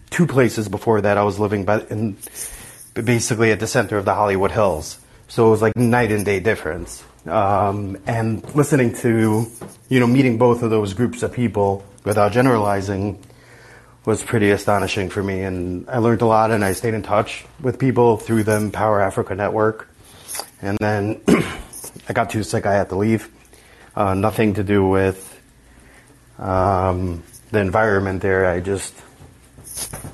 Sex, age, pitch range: male, 30-49, 95-115 Hz